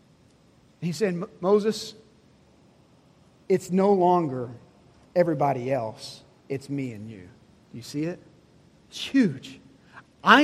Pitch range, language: 130-165 Hz, English